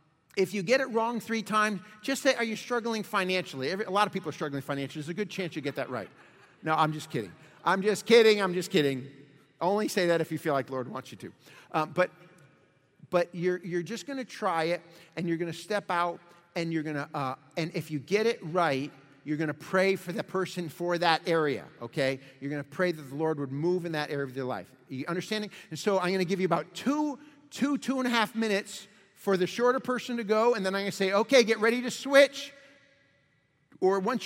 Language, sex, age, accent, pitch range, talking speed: English, male, 50-69, American, 155-210 Hz, 245 wpm